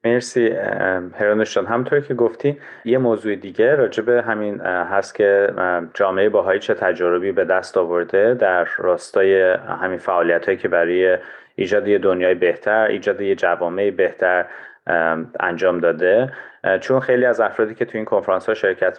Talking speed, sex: 150 wpm, male